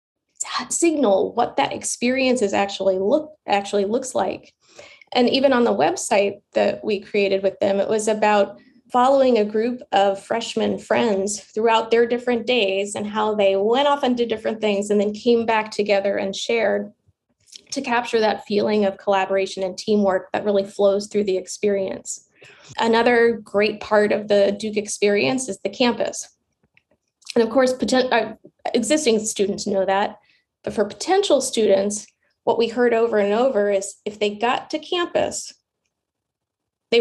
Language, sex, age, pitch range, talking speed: English, female, 20-39, 200-245 Hz, 160 wpm